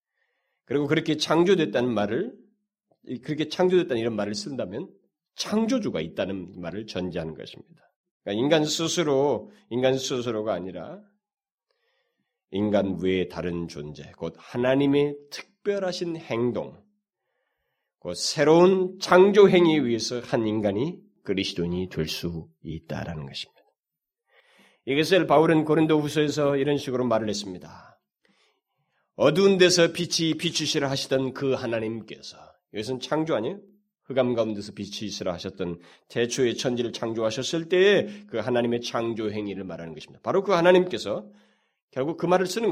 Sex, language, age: male, Korean, 40-59